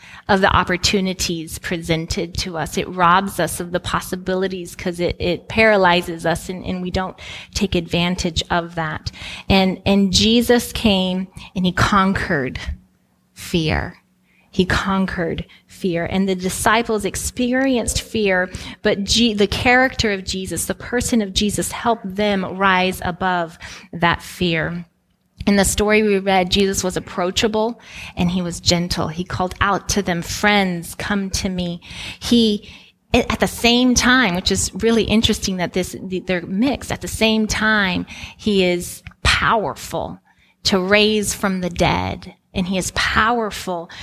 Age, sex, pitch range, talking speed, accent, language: 20-39, female, 175-210 Hz, 145 wpm, American, English